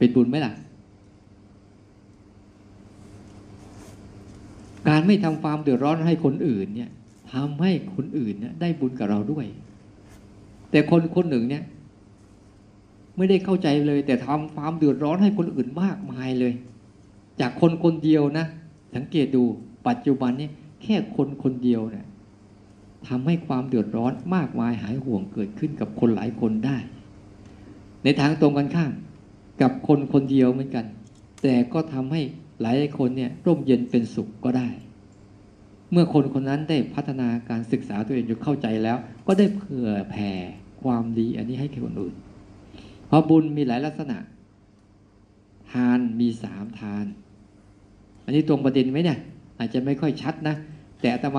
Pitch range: 105-145 Hz